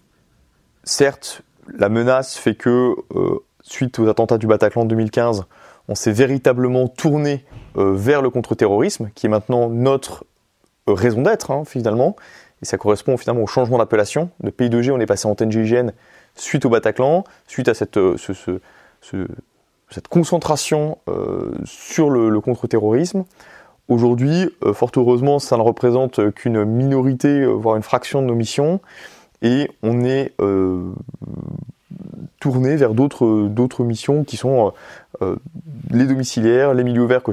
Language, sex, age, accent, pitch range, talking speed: French, male, 20-39, French, 115-140 Hz, 155 wpm